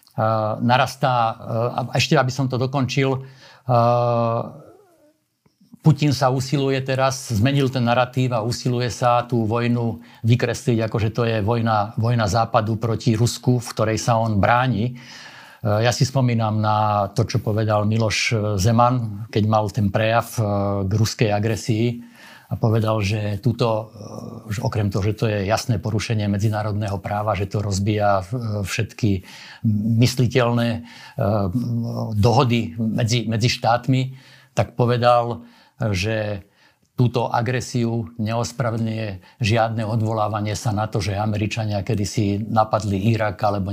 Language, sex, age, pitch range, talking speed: Slovak, male, 50-69, 105-120 Hz, 120 wpm